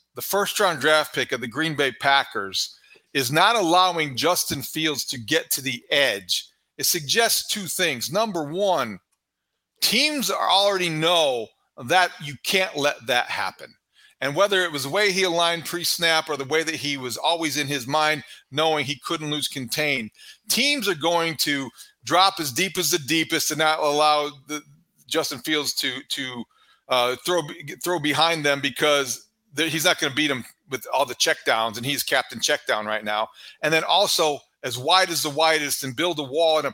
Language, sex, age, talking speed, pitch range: English, male, 40-59, 185 wpm, 145-175 Hz